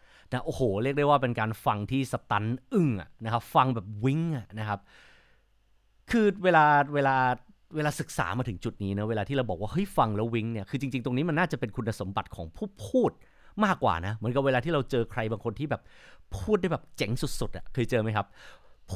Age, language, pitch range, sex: 30-49, Thai, 110-145 Hz, male